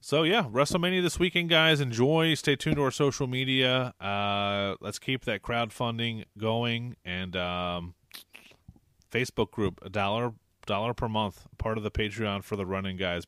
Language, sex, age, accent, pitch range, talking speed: English, male, 30-49, American, 90-115 Hz, 165 wpm